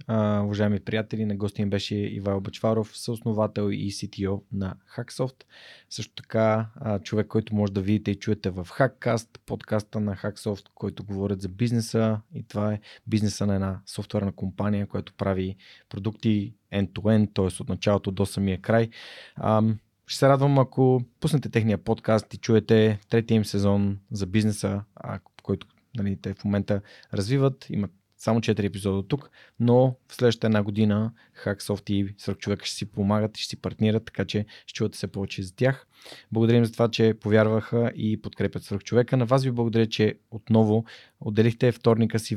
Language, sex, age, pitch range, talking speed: Bulgarian, male, 20-39, 100-115 Hz, 170 wpm